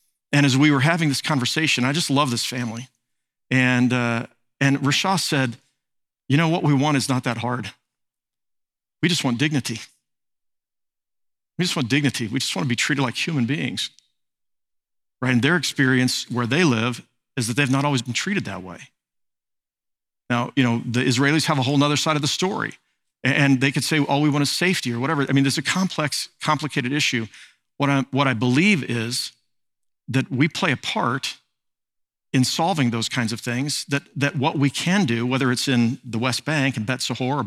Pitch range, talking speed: 125-145 Hz, 195 wpm